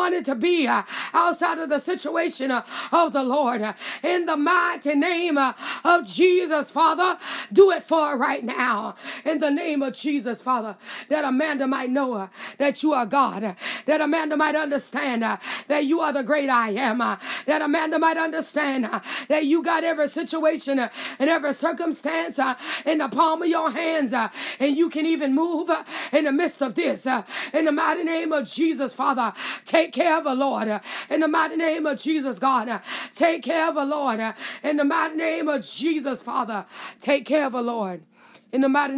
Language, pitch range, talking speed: English, 255-310 Hz, 195 wpm